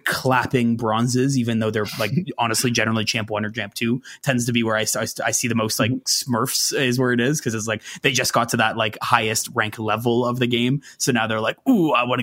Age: 20-39